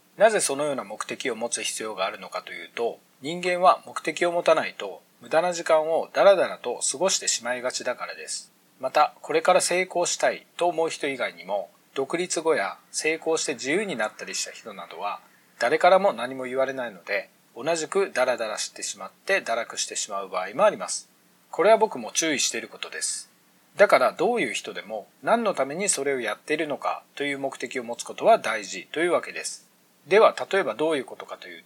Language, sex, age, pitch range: Japanese, male, 40-59, 140-200 Hz